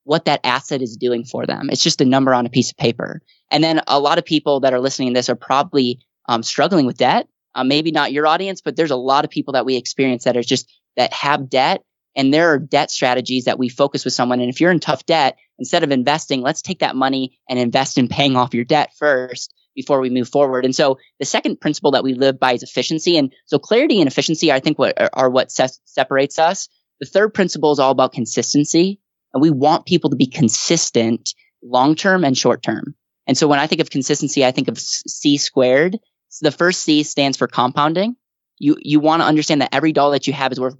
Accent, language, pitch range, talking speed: American, English, 130-160 Hz, 235 wpm